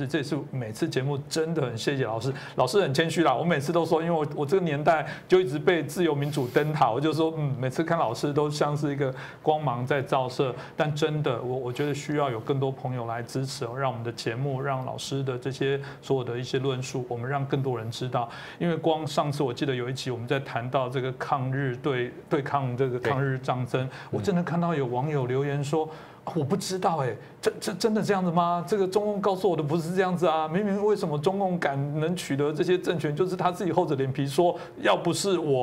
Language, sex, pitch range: Chinese, male, 130-155 Hz